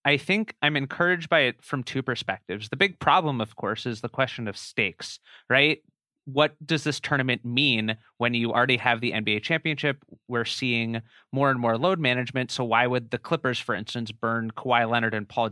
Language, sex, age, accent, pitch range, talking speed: English, male, 30-49, American, 110-135 Hz, 195 wpm